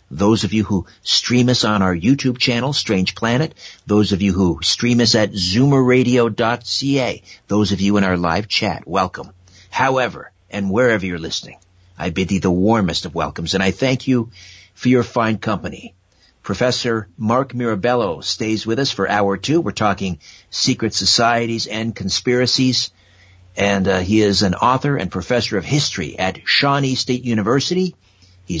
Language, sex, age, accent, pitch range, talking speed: English, male, 50-69, American, 95-120 Hz, 165 wpm